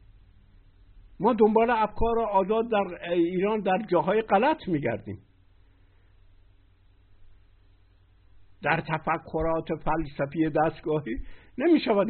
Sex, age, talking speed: male, 60-79, 75 wpm